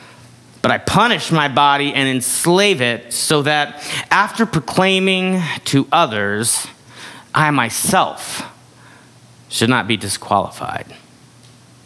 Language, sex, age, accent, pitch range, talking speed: English, male, 30-49, American, 110-135 Hz, 100 wpm